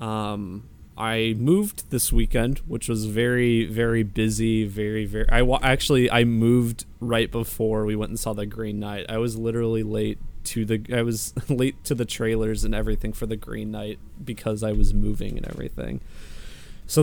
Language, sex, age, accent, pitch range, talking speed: English, male, 20-39, American, 105-120 Hz, 180 wpm